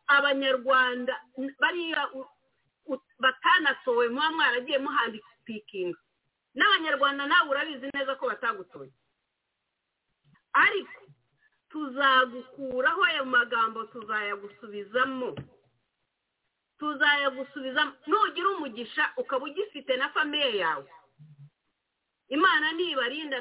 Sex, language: female, English